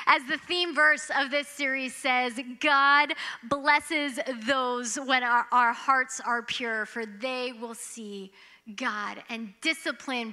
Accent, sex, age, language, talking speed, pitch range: American, female, 10-29, English, 140 wpm, 240-320 Hz